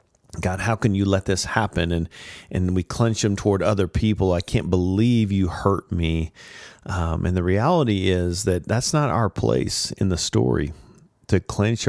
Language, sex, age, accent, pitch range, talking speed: English, male, 40-59, American, 85-105 Hz, 180 wpm